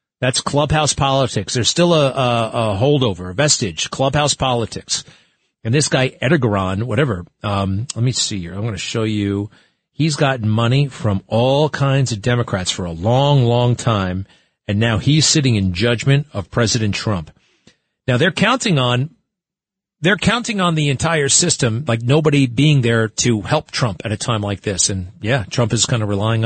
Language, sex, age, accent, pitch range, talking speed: English, male, 40-59, American, 110-145 Hz, 180 wpm